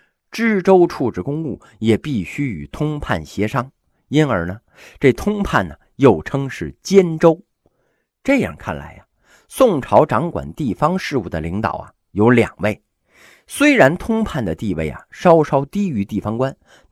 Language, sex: Chinese, male